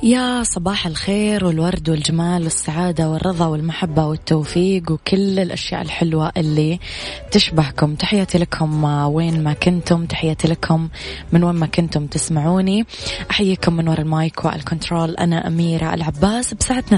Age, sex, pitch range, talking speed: 20-39, female, 155-180 Hz, 125 wpm